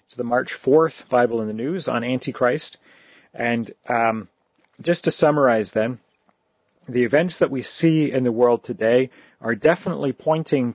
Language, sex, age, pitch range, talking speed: English, male, 40-59, 115-150 Hz, 155 wpm